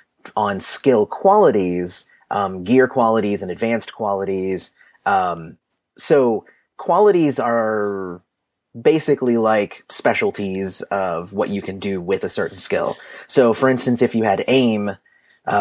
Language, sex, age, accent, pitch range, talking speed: English, male, 30-49, American, 100-125 Hz, 125 wpm